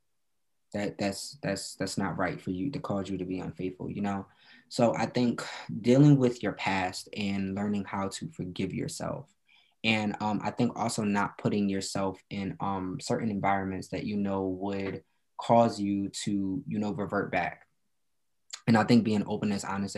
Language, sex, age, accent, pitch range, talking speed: English, male, 20-39, American, 95-105 Hz, 175 wpm